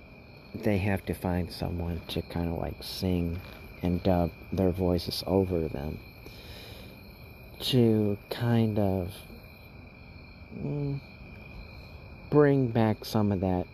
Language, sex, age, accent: English, male, 40-59, American